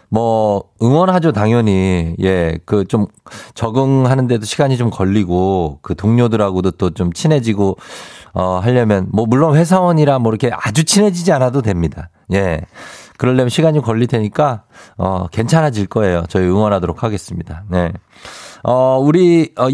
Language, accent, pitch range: Korean, native, 95-140 Hz